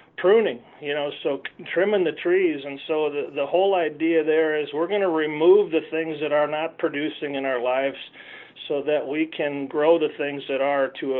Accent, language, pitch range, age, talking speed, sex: American, English, 140-160 Hz, 40-59, 205 wpm, male